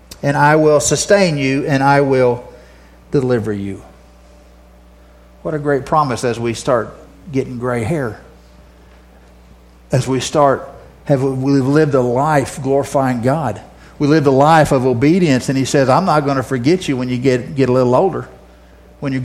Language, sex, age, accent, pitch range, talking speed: English, male, 50-69, American, 105-155 Hz, 170 wpm